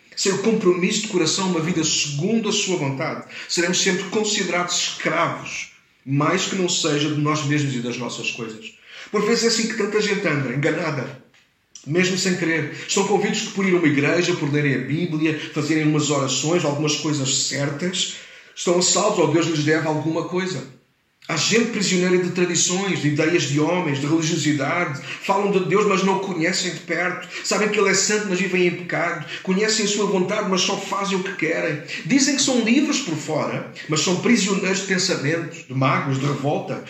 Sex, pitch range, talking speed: male, 150-195 Hz, 190 wpm